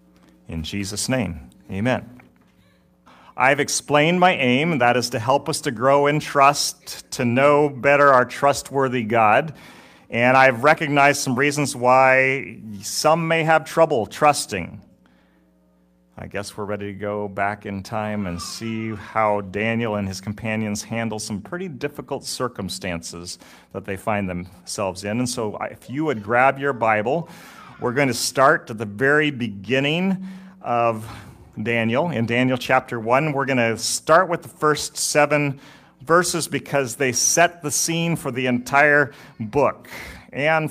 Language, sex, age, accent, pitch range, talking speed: English, male, 40-59, American, 110-145 Hz, 150 wpm